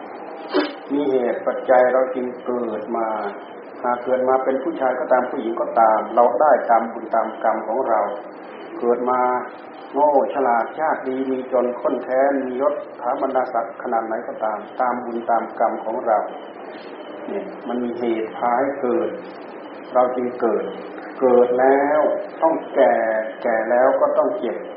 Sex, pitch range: male, 115-135 Hz